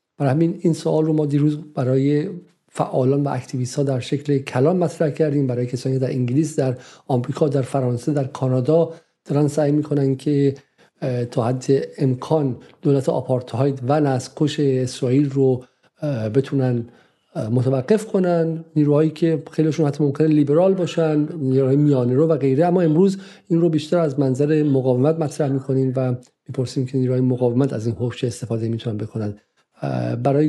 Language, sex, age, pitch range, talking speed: Persian, male, 50-69, 130-155 Hz, 150 wpm